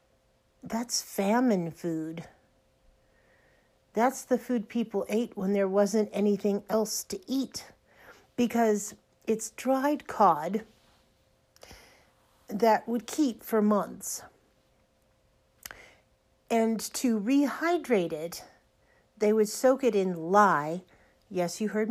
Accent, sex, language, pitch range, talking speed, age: American, female, English, 175-240 Hz, 100 wpm, 50-69